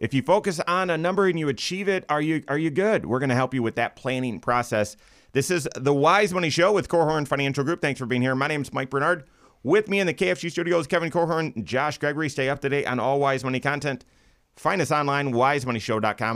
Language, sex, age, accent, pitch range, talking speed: English, male, 30-49, American, 105-145 Hz, 245 wpm